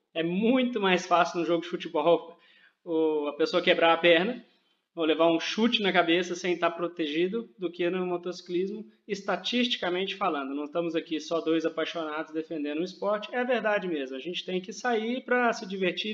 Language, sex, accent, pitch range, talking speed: Portuguese, male, Brazilian, 170-210 Hz, 185 wpm